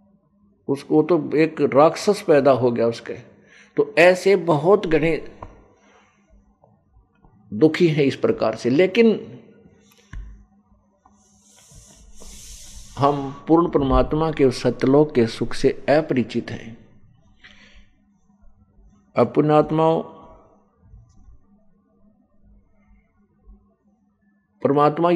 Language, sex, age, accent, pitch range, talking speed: Hindi, male, 50-69, native, 115-155 Hz, 70 wpm